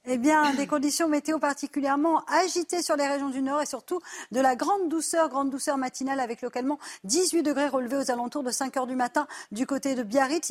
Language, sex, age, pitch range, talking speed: French, female, 40-59, 250-300 Hz, 210 wpm